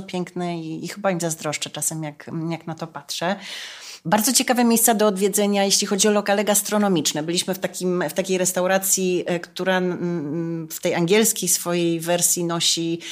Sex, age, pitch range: female, 30-49, 170-195 Hz